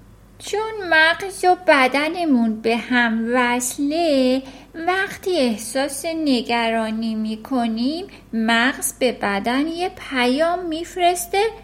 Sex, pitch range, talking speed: female, 225-330 Hz, 90 wpm